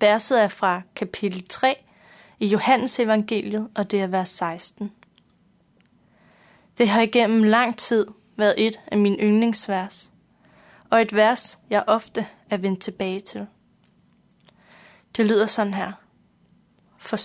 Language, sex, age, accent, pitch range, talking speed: Danish, female, 20-39, native, 200-220 Hz, 125 wpm